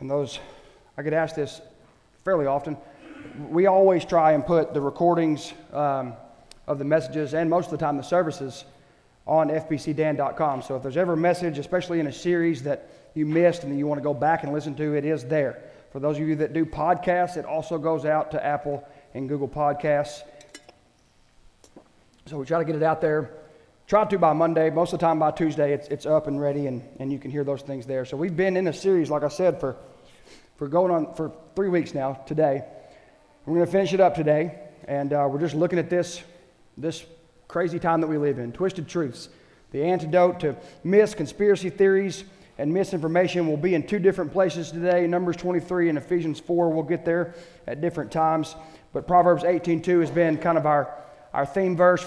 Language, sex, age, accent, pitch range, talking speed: English, male, 30-49, American, 150-175 Hz, 205 wpm